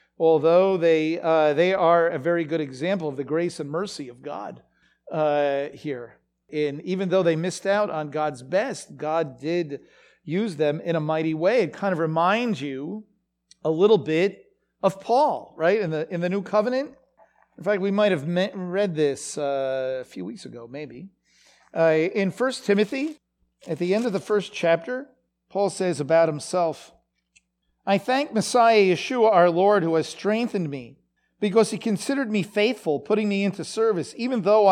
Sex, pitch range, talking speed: male, 160-215 Hz, 175 wpm